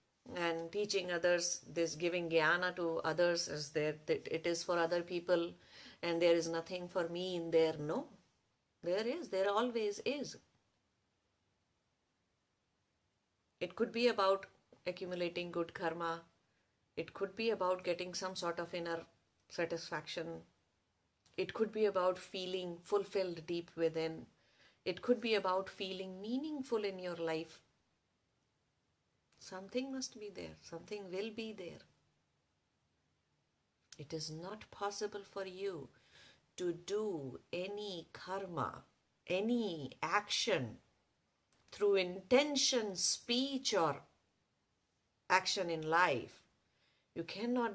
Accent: Indian